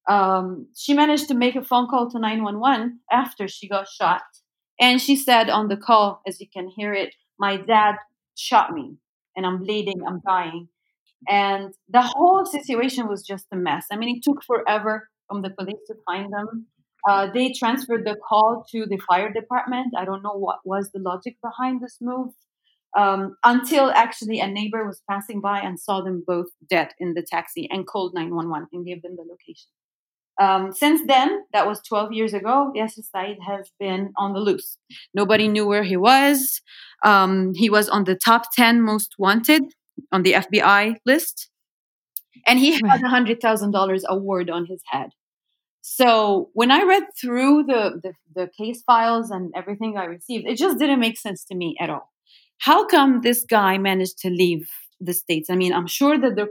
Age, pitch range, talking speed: 30-49, 190-240 Hz, 185 wpm